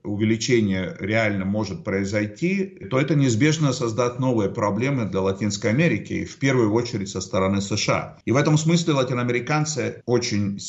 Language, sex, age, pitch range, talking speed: Russian, male, 50-69, 100-125 Hz, 140 wpm